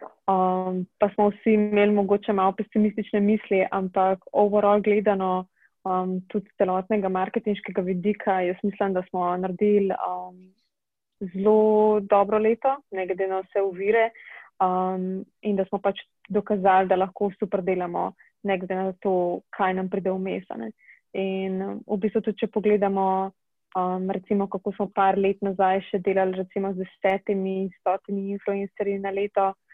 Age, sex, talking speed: 20-39, female, 140 wpm